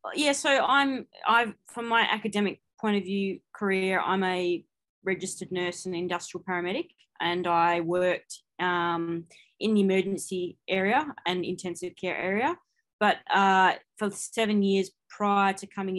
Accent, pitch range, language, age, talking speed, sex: Australian, 180-205 Hz, English, 20-39, 145 wpm, female